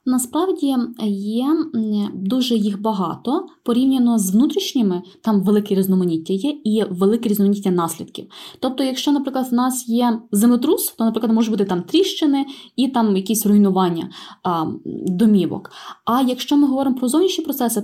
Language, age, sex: Ukrainian, 20-39, female